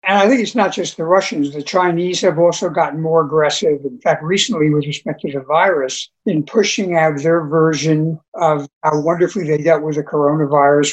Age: 60-79